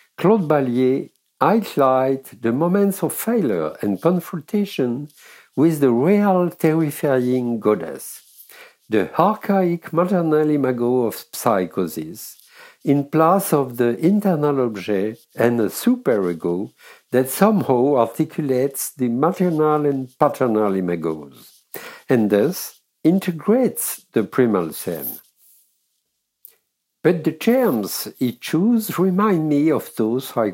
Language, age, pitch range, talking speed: English, 60-79, 130-195 Hz, 105 wpm